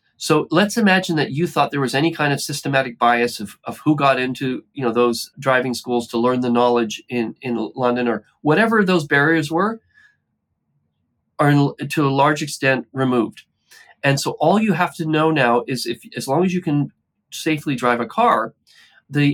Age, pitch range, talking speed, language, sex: 40-59, 125-160 Hz, 190 wpm, English, male